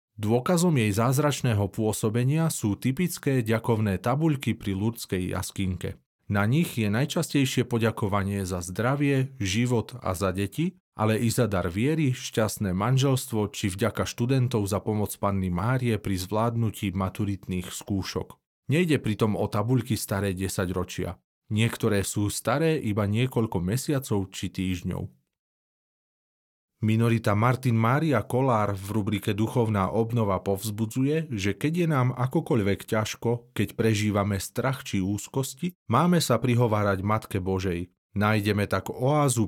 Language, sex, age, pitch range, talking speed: Slovak, male, 40-59, 100-125 Hz, 125 wpm